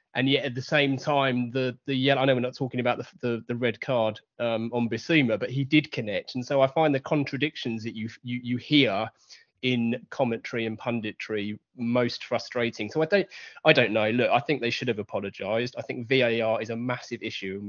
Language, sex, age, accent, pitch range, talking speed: English, male, 20-39, British, 115-135 Hz, 220 wpm